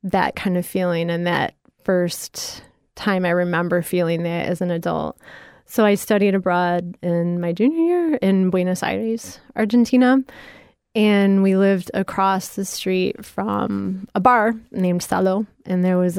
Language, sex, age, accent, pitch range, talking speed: English, female, 30-49, American, 175-220 Hz, 150 wpm